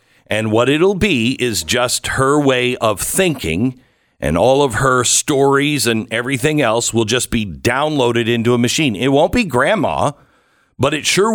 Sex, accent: male, American